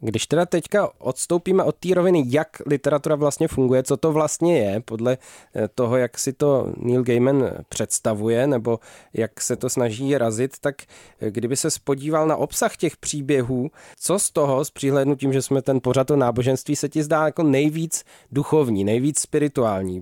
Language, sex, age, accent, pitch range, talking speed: Czech, male, 20-39, native, 125-140 Hz, 170 wpm